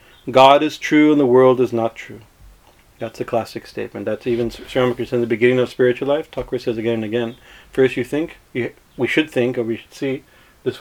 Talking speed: 215 wpm